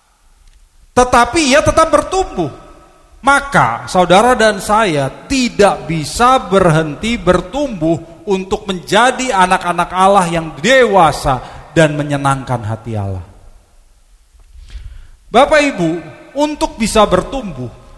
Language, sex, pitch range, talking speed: Indonesian, male, 140-215 Hz, 90 wpm